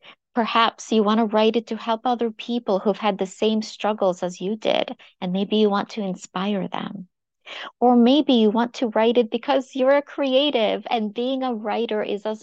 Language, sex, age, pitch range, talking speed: English, female, 40-59, 200-250 Hz, 205 wpm